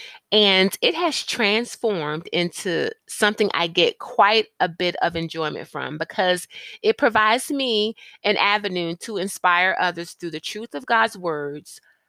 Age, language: 30-49, English